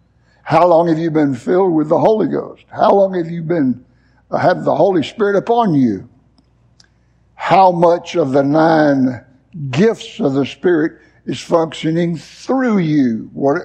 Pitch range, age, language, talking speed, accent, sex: 140-200 Hz, 60-79, English, 155 wpm, American, male